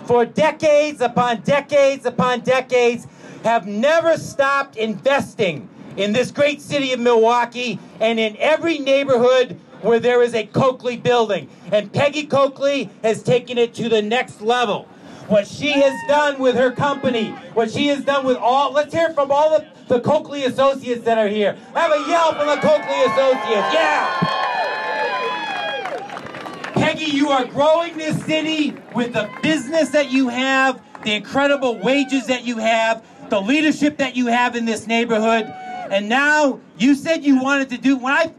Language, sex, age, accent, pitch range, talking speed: English, male, 40-59, American, 220-280 Hz, 160 wpm